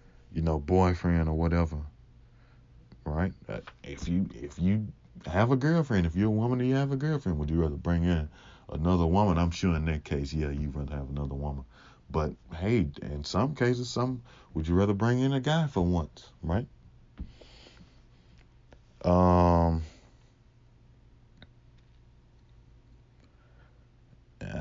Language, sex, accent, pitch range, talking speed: English, male, American, 75-95 Hz, 140 wpm